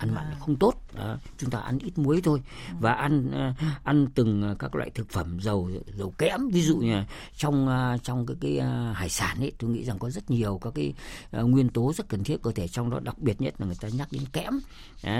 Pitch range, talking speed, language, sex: 110-150 Hz, 235 wpm, Vietnamese, female